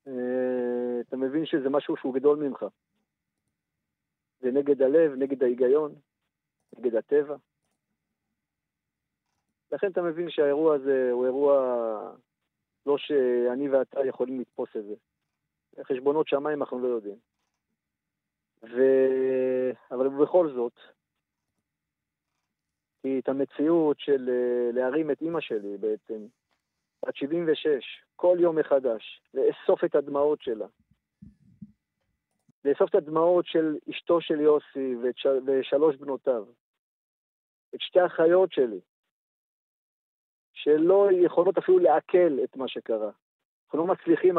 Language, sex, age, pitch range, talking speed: Hebrew, male, 50-69, 130-170 Hz, 105 wpm